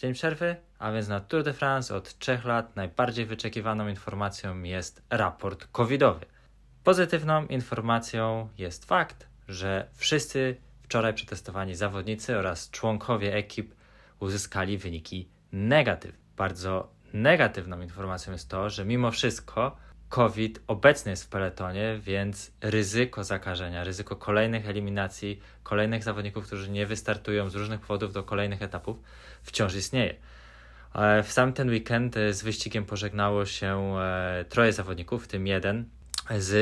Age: 20-39